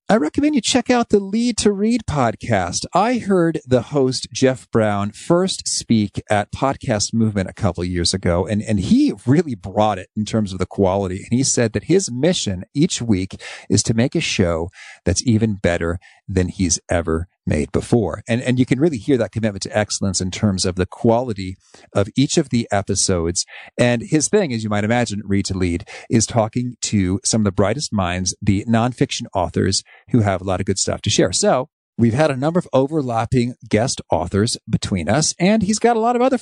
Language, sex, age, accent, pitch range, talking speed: English, male, 40-59, American, 95-135 Hz, 205 wpm